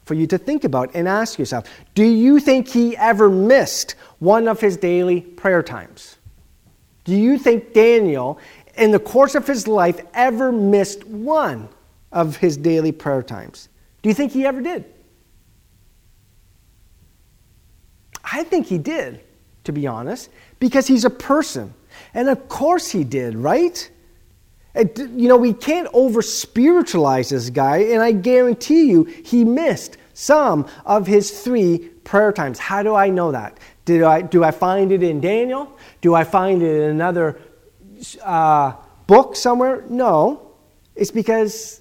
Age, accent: 40-59, American